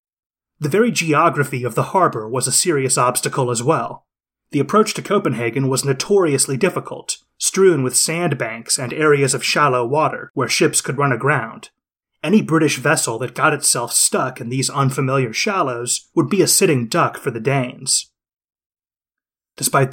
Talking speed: 155 wpm